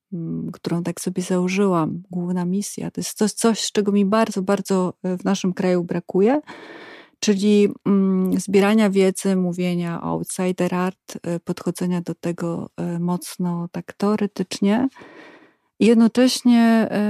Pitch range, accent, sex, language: 180-205 Hz, native, female, Polish